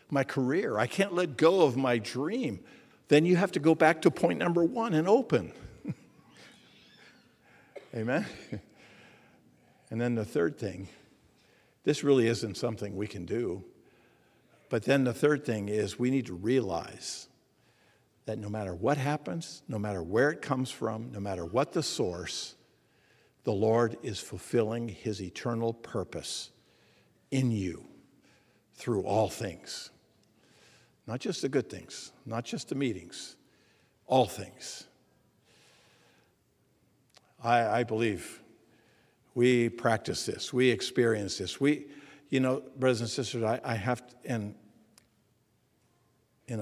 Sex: male